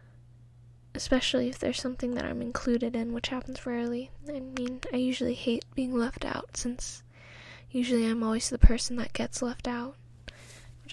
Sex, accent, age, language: female, American, 10-29, English